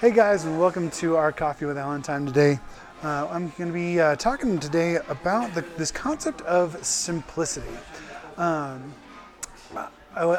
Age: 20-39